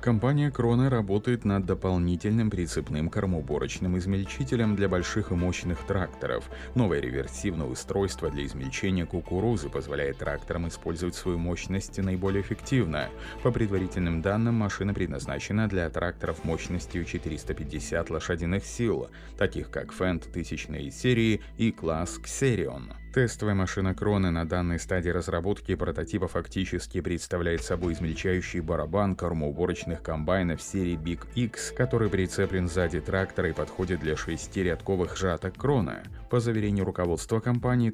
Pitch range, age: 85-100 Hz, 30-49